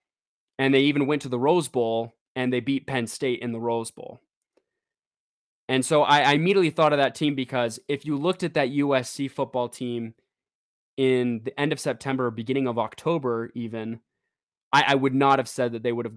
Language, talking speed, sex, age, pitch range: English, 200 wpm, male, 20-39, 125-145 Hz